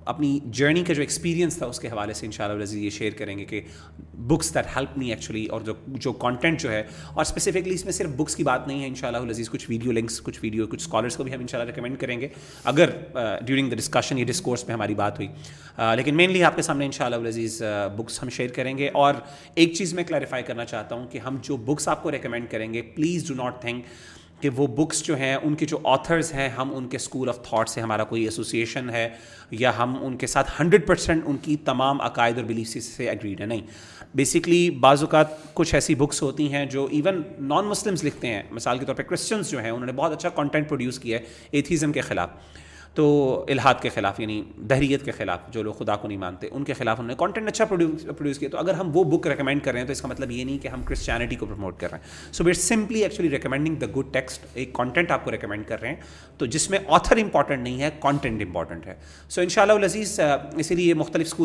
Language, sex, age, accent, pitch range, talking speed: English, male, 30-49, Indian, 115-155 Hz, 185 wpm